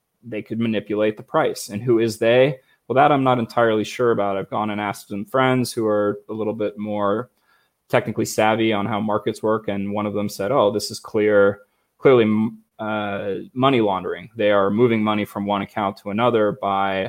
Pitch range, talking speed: 105-120 Hz, 200 wpm